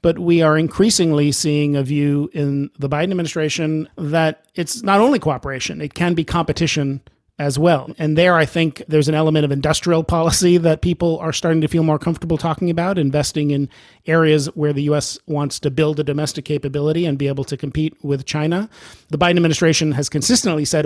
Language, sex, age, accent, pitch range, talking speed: English, male, 40-59, American, 140-165 Hz, 195 wpm